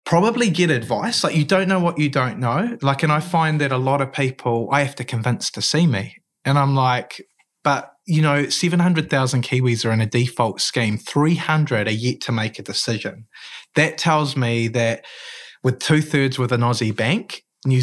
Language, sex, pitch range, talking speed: English, male, 115-150 Hz, 195 wpm